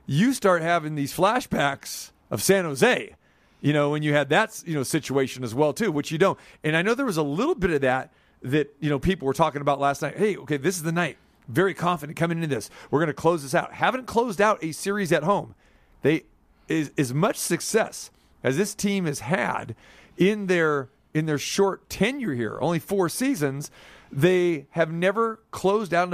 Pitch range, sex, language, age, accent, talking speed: 145-195 Hz, male, English, 40-59, American, 210 wpm